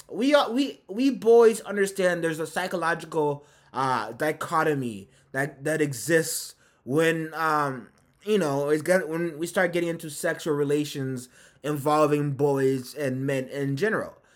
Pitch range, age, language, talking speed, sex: 145-180 Hz, 20-39, English, 135 wpm, male